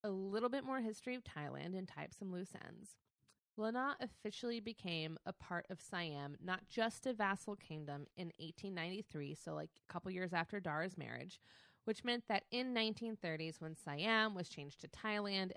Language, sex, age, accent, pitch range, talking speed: English, female, 20-39, American, 160-200 Hz, 175 wpm